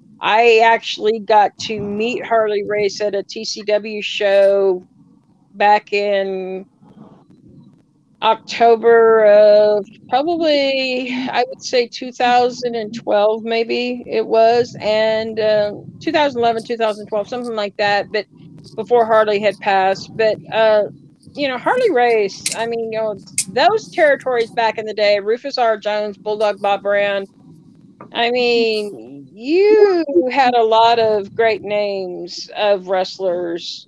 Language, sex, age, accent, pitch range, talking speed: English, female, 40-59, American, 195-230 Hz, 120 wpm